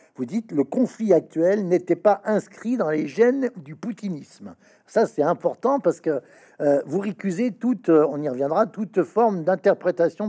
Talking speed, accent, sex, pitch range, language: 165 wpm, French, male, 155-215 Hz, French